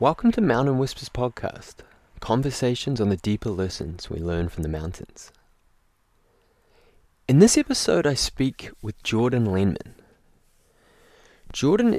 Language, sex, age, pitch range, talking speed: English, male, 20-39, 90-120 Hz, 120 wpm